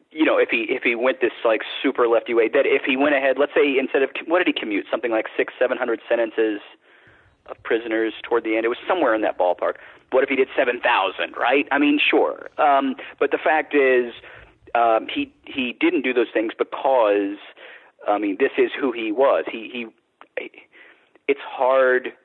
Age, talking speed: 40-59, 200 wpm